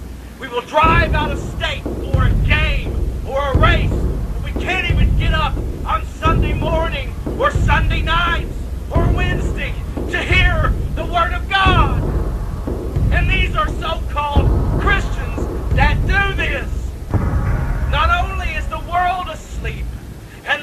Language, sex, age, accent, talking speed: English, male, 40-59, American, 135 wpm